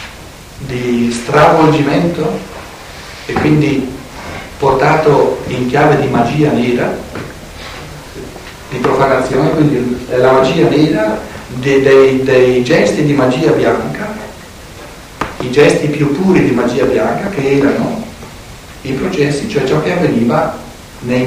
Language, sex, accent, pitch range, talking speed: Italian, male, native, 125-150 Hz, 110 wpm